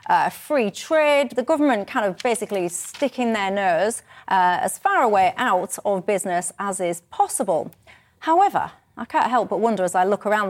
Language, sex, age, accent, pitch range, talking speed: English, female, 30-49, British, 200-300 Hz, 175 wpm